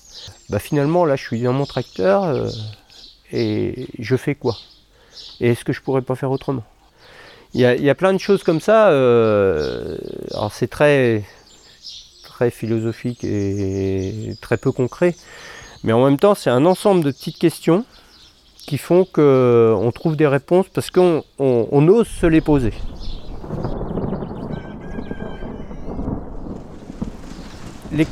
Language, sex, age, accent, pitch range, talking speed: French, male, 40-59, French, 125-185 Hz, 145 wpm